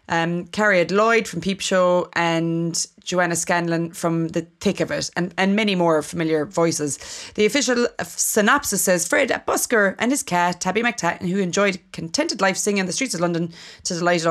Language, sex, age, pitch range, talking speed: English, female, 30-49, 160-195 Hz, 190 wpm